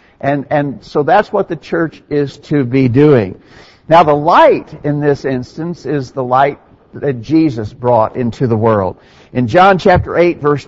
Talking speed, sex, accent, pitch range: 175 wpm, male, American, 135-170 Hz